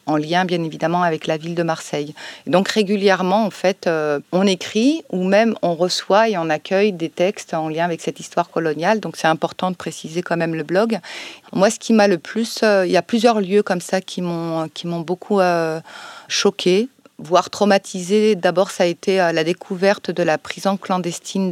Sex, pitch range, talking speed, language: female, 160-190 Hz, 210 wpm, French